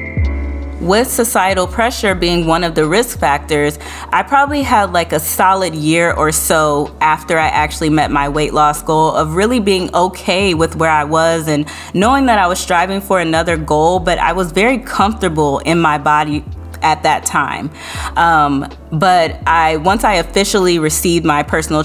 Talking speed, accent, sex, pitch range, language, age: 175 wpm, American, female, 155-195 Hz, English, 20-39